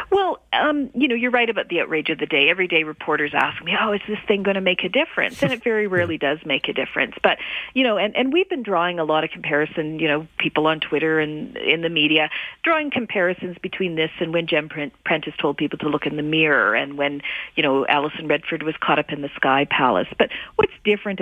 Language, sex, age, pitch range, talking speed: English, female, 40-59, 160-220 Hz, 245 wpm